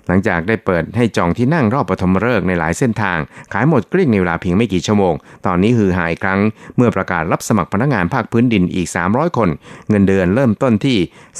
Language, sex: Thai, male